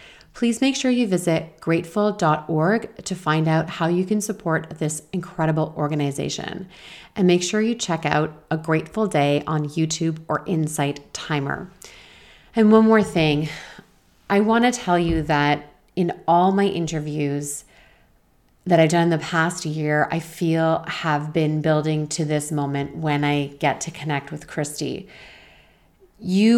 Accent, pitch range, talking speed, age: American, 155-190 Hz, 150 wpm, 30-49